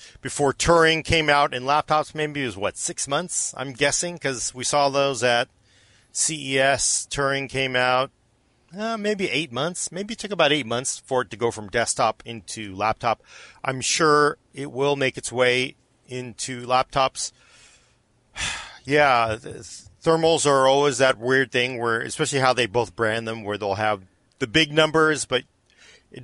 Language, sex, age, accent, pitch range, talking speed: English, male, 40-59, American, 115-145 Hz, 165 wpm